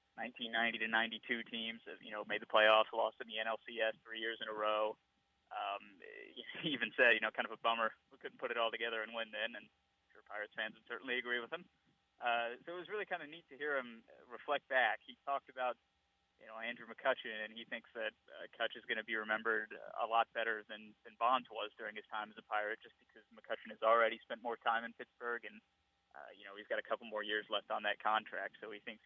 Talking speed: 245 wpm